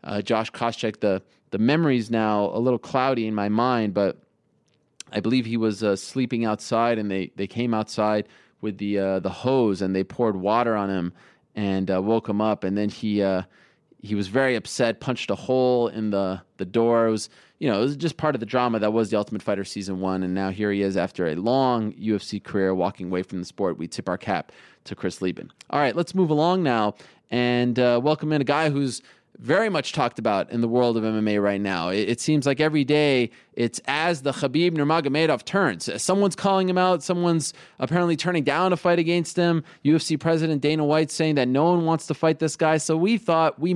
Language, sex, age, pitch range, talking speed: English, male, 20-39, 105-160 Hz, 220 wpm